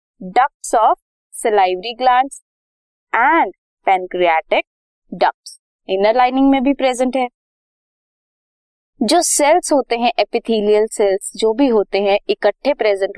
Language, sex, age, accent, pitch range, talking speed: Hindi, female, 20-39, native, 205-295 Hz, 75 wpm